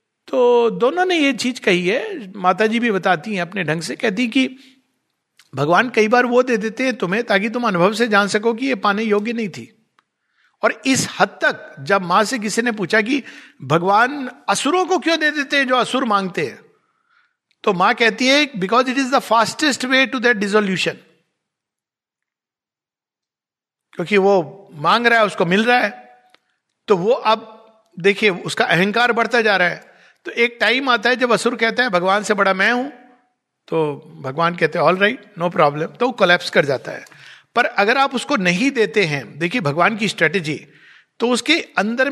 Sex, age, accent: male, 60-79, native